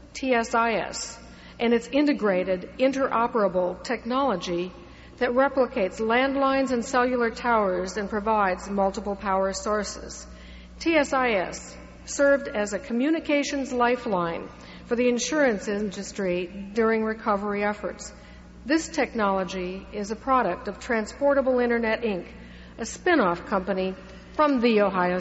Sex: female